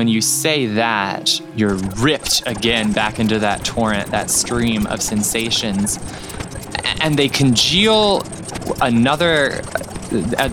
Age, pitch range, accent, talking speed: 20-39, 105-125 Hz, American, 115 wpm